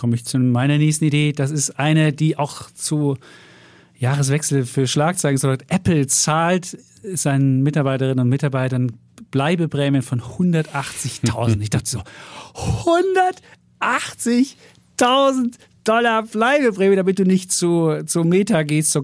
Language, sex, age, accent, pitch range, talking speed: German, male, 40-59, German, 135-160 Hz, 125 wpm